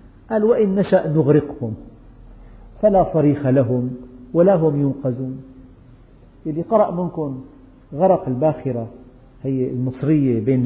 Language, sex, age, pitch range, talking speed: Arabic, male, 50-69, 125-170 Hz, 100 wpm